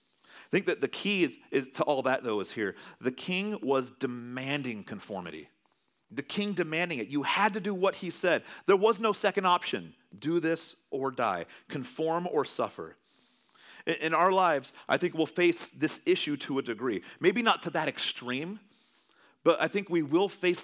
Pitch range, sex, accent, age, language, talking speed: 110-170 Hz, male, American, 40-59, English, 180 wpm